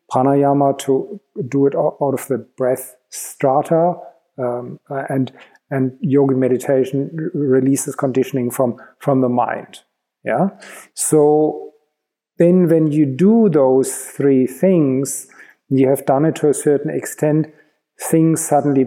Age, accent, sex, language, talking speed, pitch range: 40-59, German, male, English, 120 wpm, 135-160 Hz